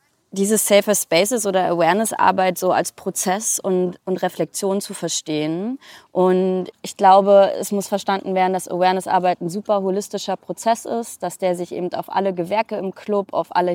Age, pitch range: 20-39, 175-210 Hz